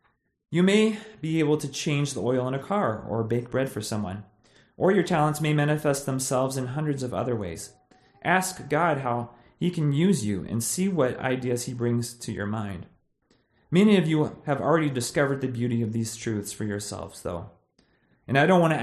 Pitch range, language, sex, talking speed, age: 115-150 Hz, English, male, 200 wpm, 30-49